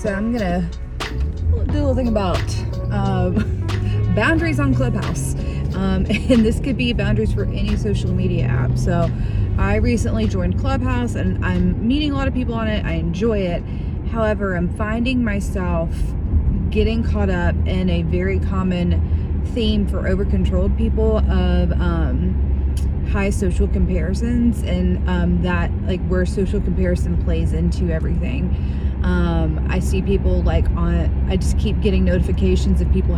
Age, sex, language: 30-49, female, English